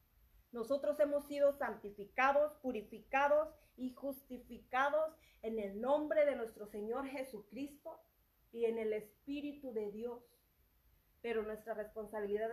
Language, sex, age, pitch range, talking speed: Spanish, female, 30-49, 225-280 Hz, 110 wpm